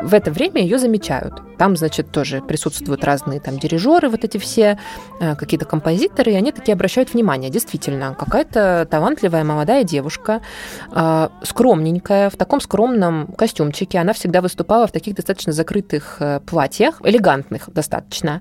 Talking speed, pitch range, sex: 135 wpm, 155-200 Hz, female